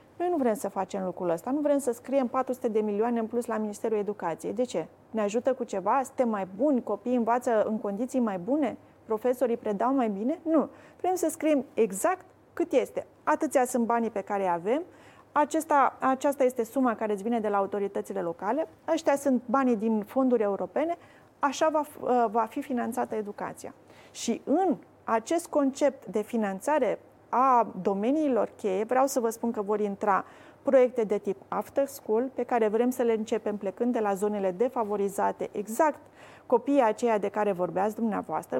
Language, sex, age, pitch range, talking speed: Romanian, female, 30-49, 210-270 Hz, 175 wpm